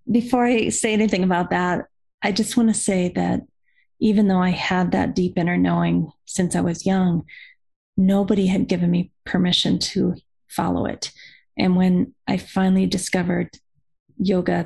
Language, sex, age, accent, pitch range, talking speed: English, female, 30-49, American, 180-230 Hz, 155 wpm